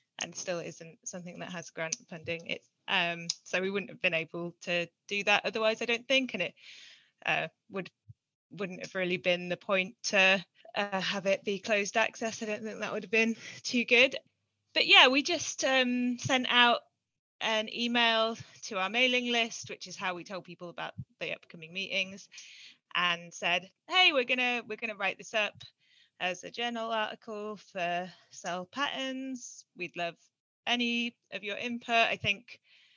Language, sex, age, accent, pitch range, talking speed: English, female, 20-39, British, 185-230 Hz, 175 wpm